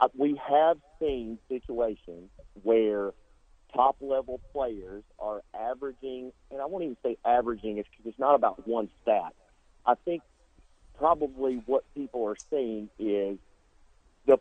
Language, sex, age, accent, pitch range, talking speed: English, male, 40-59, American, 110-140 Hz, 125 wpm